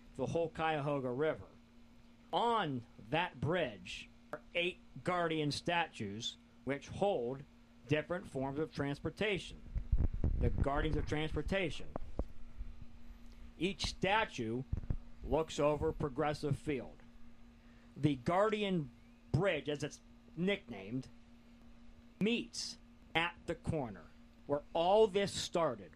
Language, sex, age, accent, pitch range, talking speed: English, male, 50-69, American, 115-175 Hz, 95 wpm